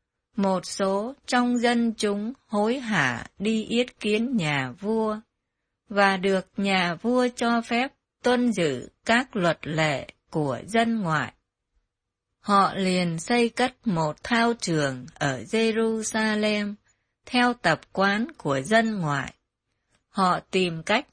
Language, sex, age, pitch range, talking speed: Vietnamese, female, 20-39, 165-230 Hz, 125 wpm